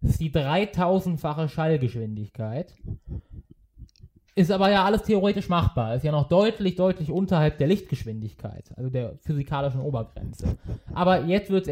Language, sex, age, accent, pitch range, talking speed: German, male, 20-39, German, 135-185 Hz, 140 wpm